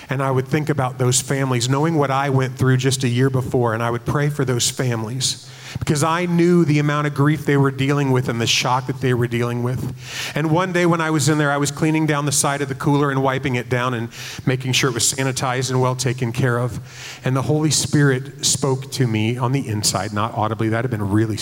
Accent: American